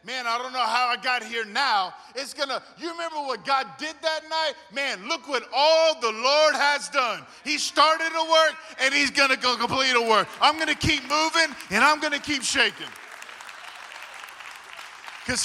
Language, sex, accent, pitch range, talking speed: English, male, American, 205-280 Hz, 200 wpm